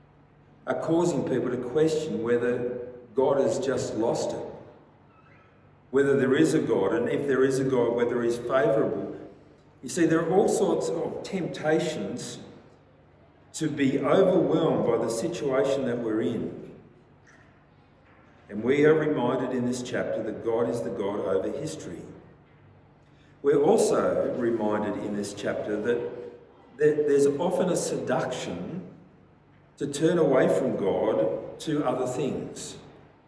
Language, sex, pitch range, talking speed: English, male, 120-150 Hz, 135 wpm